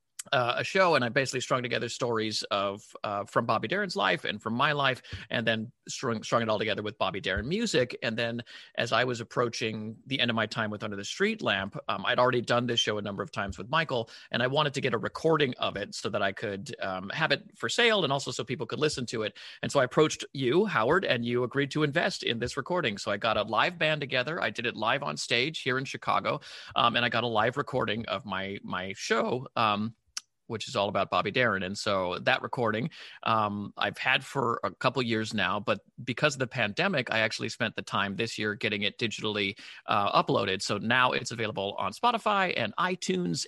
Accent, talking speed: American, 235 wpm